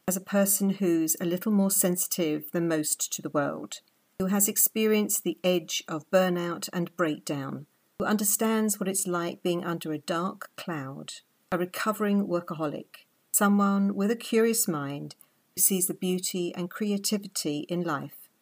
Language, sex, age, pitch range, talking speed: English, female, 50-69, 165-205 Hz, 155 wpm